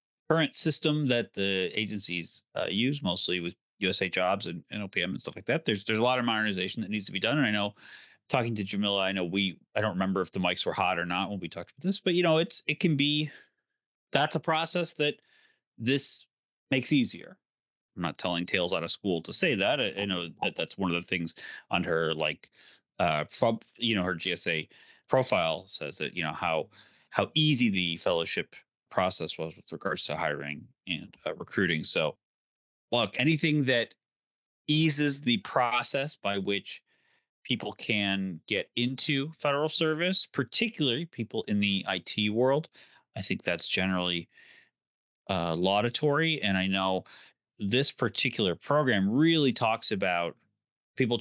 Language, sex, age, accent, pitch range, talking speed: English, male, 30-49, American, 95-150 Hz, 175 wpm